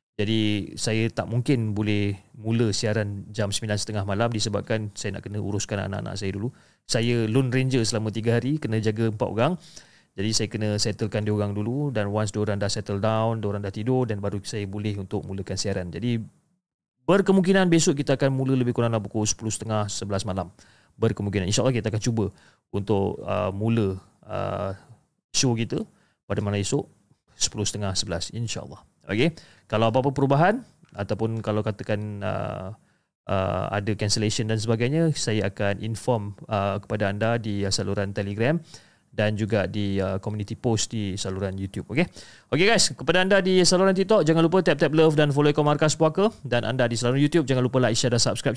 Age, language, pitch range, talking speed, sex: 30-49, Malay, 100-130 Hz, 180 wpm, male